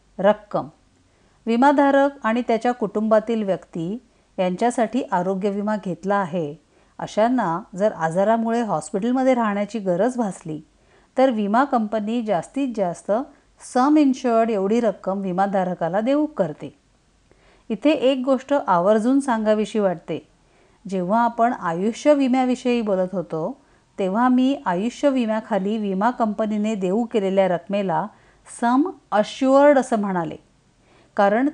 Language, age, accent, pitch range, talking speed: Marathi, 50-69, native, 185-245 Hz, 105 wpm